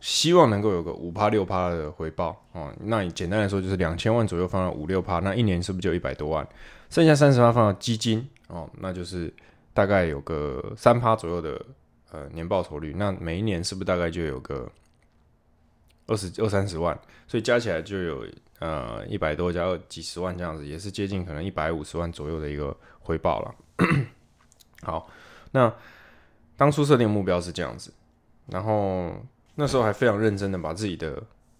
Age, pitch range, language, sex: 20-39, 85-105 Hz, Chinese, male